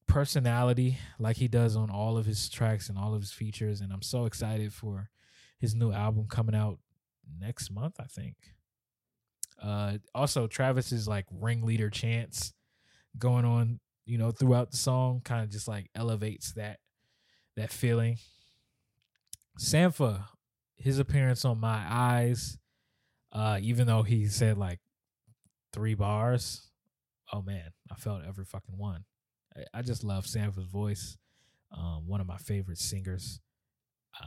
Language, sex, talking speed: English, male, 140 wpm